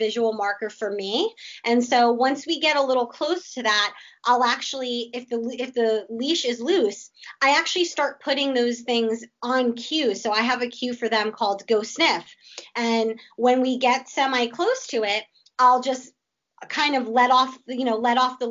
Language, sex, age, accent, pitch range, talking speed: English, female, 20-39, American, 230-280 Hz, 195 wpm